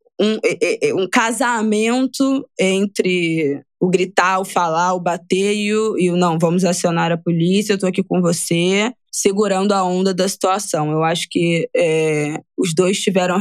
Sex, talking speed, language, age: female, 150 wpm, Portuguese, 20-39